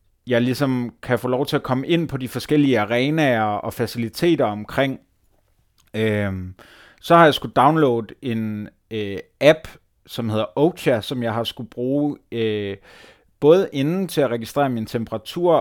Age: 30-49